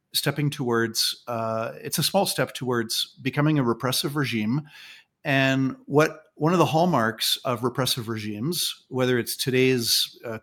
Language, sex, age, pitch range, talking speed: English, male, 50-69, 120-150 Hz, 145 wpm